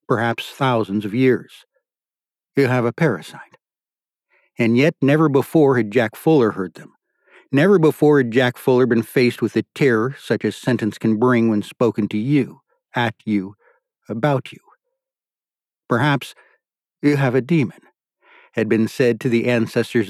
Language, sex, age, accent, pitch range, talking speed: English, male, 60-79, American, 115-140 Hz, 150 wpm